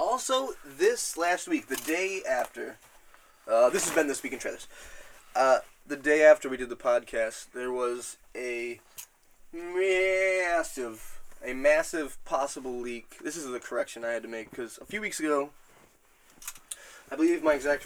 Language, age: English, 20-39